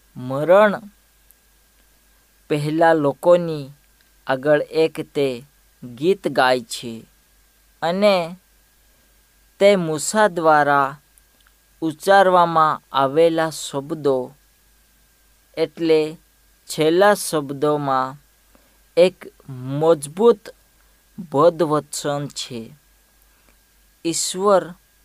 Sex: female